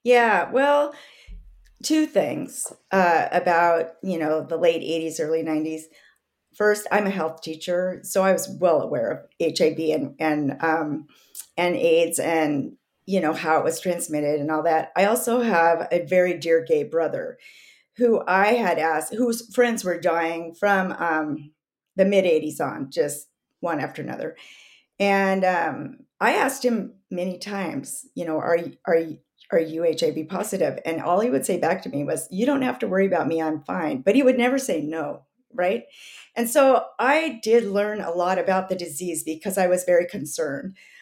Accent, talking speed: American, 175 wpm